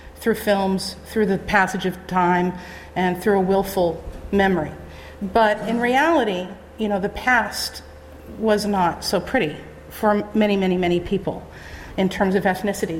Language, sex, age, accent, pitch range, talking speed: English, female, 40-59, American, 180-210 Hz, 150 wpm